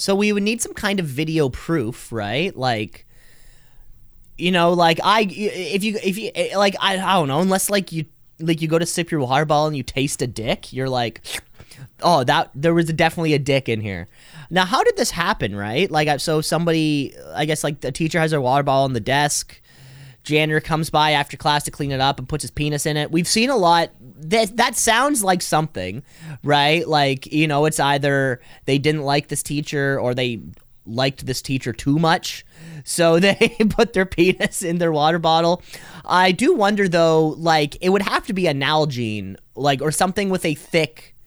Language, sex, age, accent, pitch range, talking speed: English, male, 20-39, American, 135-170 Hz, 205 wpm